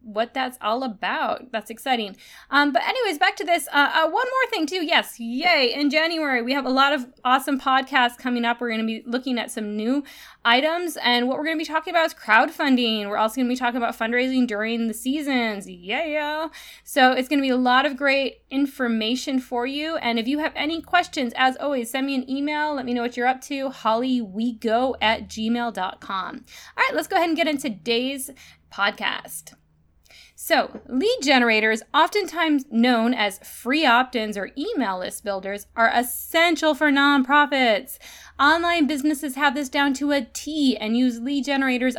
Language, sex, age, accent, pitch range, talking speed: English, female, 20-39, American, 230-295 Hz, 190 wpm